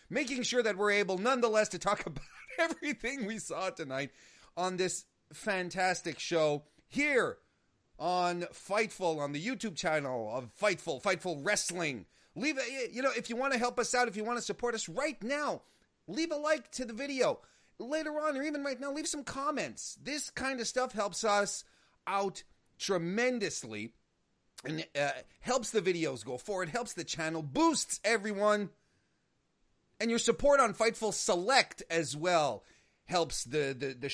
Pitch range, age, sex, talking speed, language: 160-245 Hz, 30-49, male, 165 wpm, English